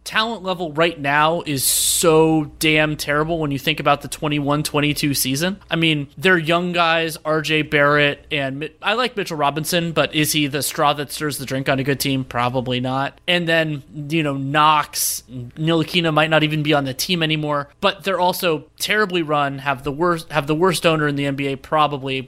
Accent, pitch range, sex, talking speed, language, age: American, 145-175 Hz, male, 195 wpm, English, 30-49